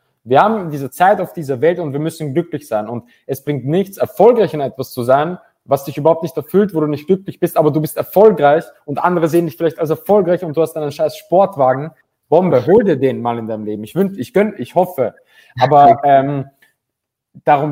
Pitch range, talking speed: 125-165 Hz, 225 wpm